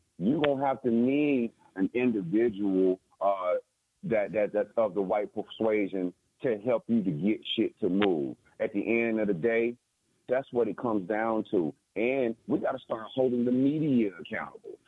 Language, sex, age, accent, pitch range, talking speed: English, male, 40-59, American, 115-140 Hz, 180 wpm